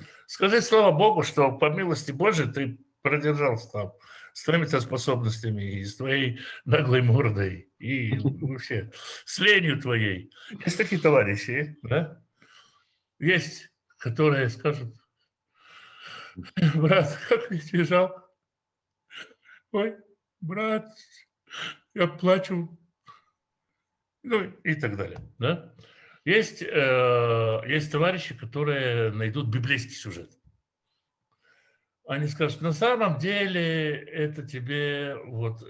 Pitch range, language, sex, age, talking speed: 115-165 Hz, Russian, male, 60-79, 100 wpm